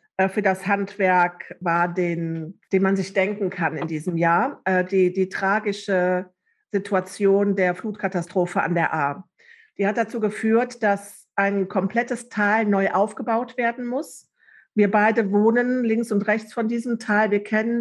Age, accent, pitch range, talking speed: 50-69, German, 190-225 Hz, 150 wpm